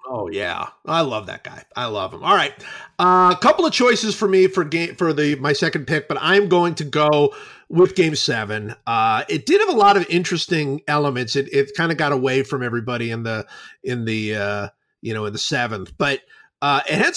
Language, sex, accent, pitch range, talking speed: English, male, American, 135-180 Hz, 225 wpm